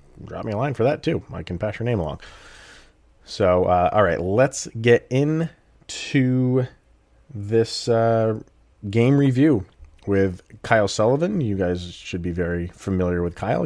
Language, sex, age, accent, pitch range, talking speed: English, male, 30-49, American, 90-115 Hz, 155 wpm